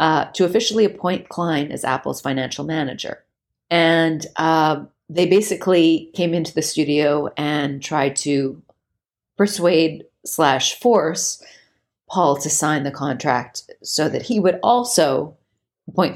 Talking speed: 125 wpm